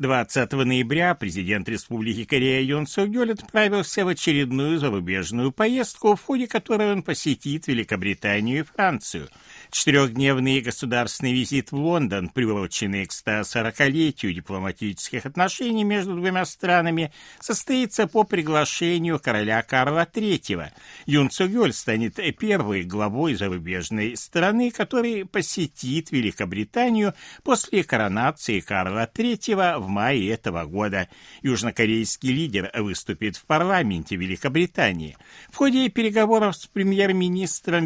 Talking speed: 110 wpm